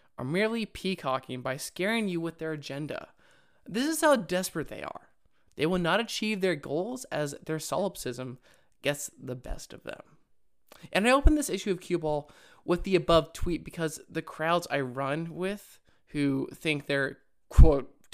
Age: 20-39